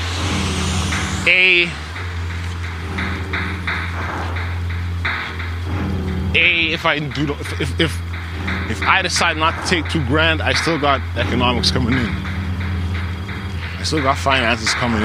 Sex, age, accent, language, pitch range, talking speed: male, 20-39, American, English, 85-95 Hz, 110 wpm